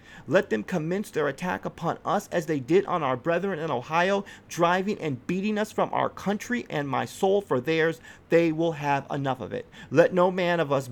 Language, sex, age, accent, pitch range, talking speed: English, male, 30-49, American, 145-195 Hz, 210 wpm